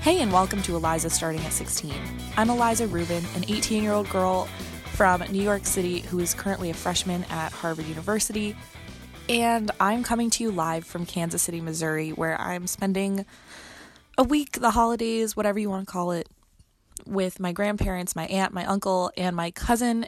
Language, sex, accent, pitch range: English, female, American, 165-195 Hz